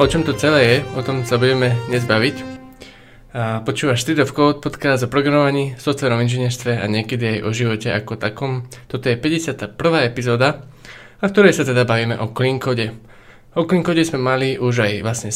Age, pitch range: 20-39, 120-140 Hz